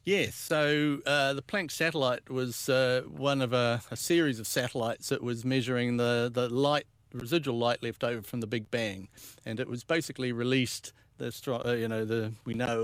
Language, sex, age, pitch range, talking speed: English, male, 50-69, 115-130 Hz, 185 wpm